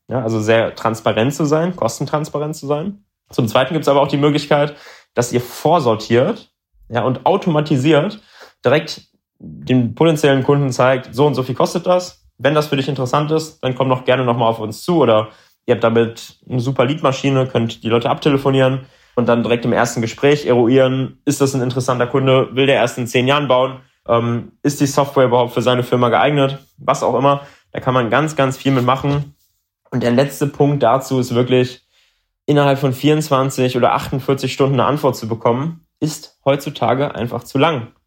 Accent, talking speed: German, 185 wpm